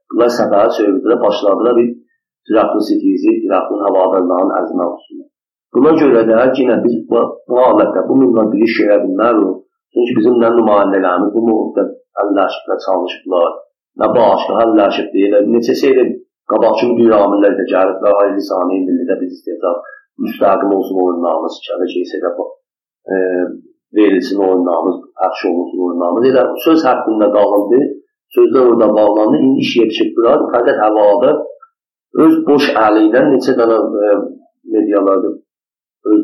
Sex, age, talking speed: male, 50-69, 100 wpm